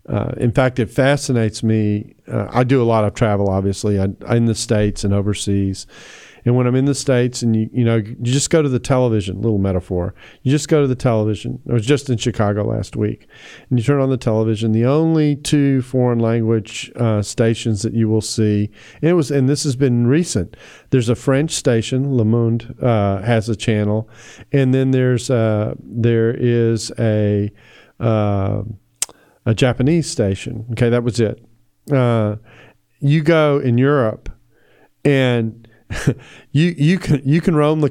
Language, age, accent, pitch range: English, 40-59, American, 110-135 Hz